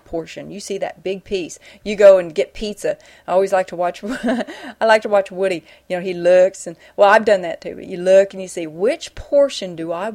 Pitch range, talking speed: 175-250 Hz, 240 wpm